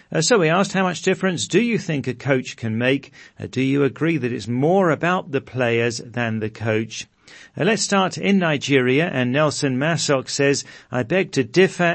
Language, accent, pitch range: English, British, 120-145 Hz